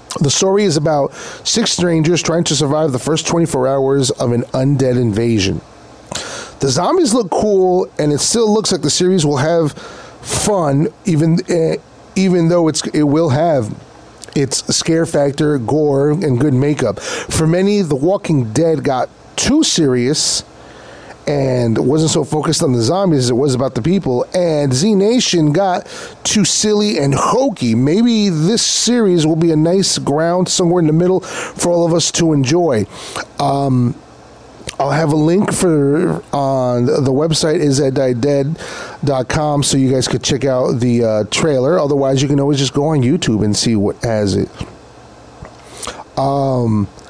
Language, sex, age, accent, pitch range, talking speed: English, male, 30-49, American, 135-175 Hz, 165 wpm